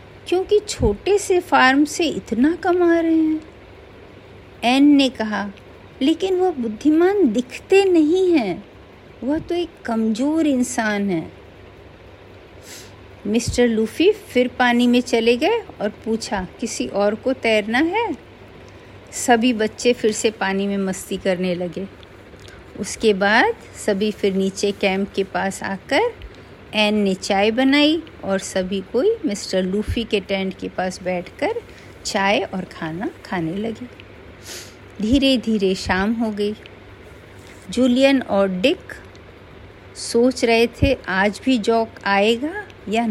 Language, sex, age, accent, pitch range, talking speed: Hindi, female, 50-69, native, 190-260 Hz, 125 wpm